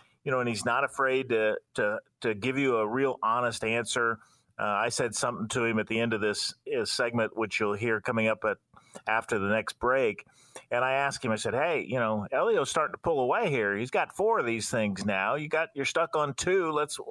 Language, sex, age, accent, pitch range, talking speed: English, male, 40-59, American, 110-140 Hz, 240 wpm